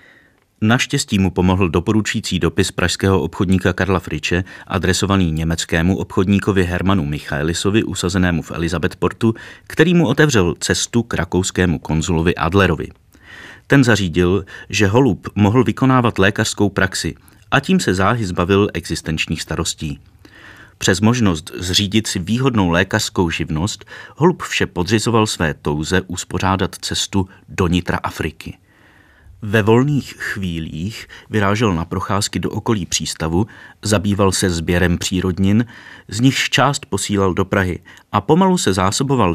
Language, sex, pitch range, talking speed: Czech, male, 90-110 Hz, 120 wpm